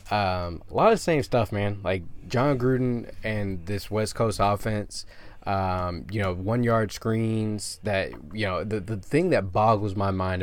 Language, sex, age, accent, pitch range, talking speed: English, male, 20-39, American, 95-110 Hz, 180 wpm